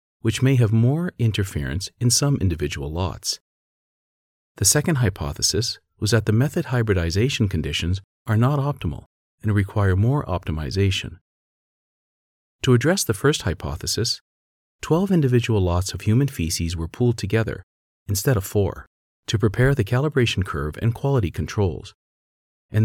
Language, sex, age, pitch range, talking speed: English, male, 40-59, 85-125 Hz, 135 wpm